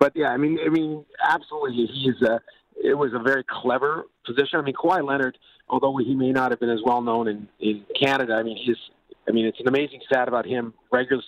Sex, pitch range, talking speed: male, 115-135 Hz, 225 wpm